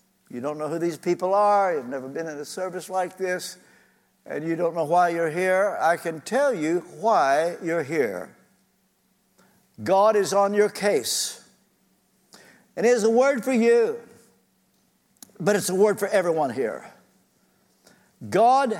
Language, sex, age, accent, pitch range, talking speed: English, male, 60-79, American, 190-240 Hz, 155 wpm